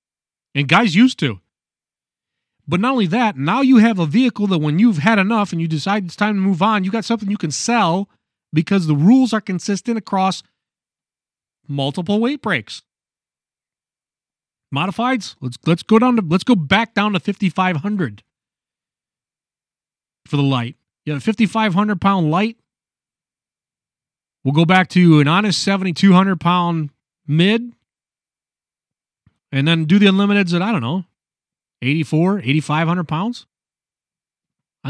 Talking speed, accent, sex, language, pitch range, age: 155 wpm, American, male, English, 155-215 Hz, 30-49